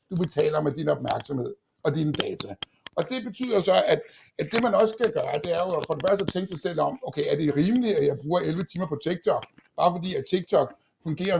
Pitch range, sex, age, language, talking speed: 150-195 Hz, male, 60-79, Danish, 240 wpm